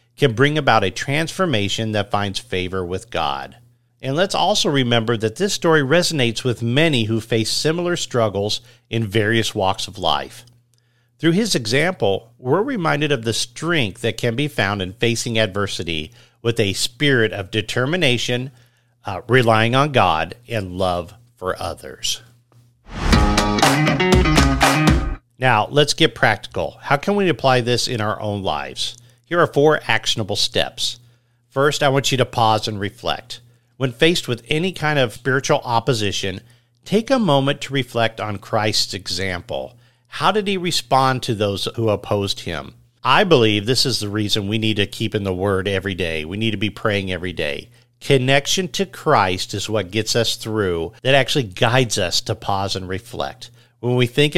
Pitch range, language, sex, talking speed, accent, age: 105-135 Hz, English, male, 165 wpm, American, 50-69